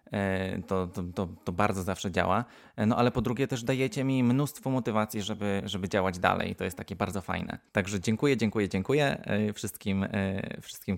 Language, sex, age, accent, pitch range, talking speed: Polish, male, 20-39, native, 95-115 Hz, 165 wpm